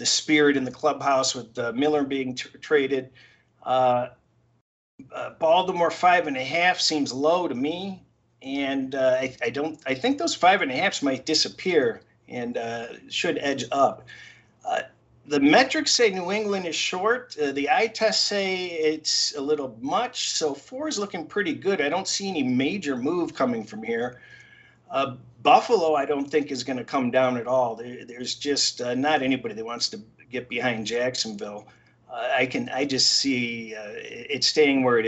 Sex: male